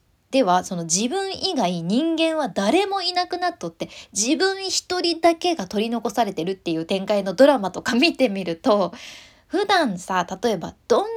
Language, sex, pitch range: Japanese, female, 200-335 Hz